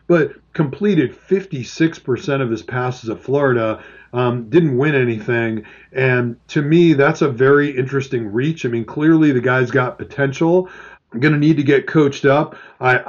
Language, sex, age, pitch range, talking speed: English, male, 40-59, 125-150 Hz, 165 wpm